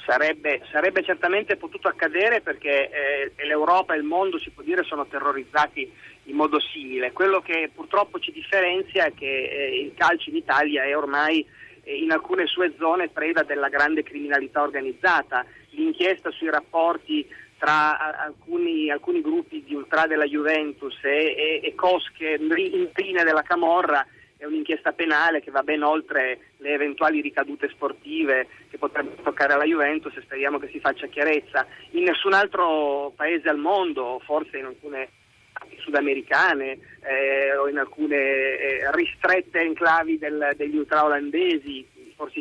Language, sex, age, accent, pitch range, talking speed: Italian, male, 30-49, native, 145-195 Hz, 145 wpm